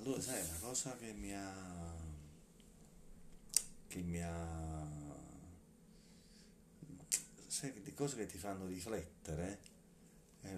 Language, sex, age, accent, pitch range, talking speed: Italian, male, 30-49, native, 80-100 Hz, 100 wpm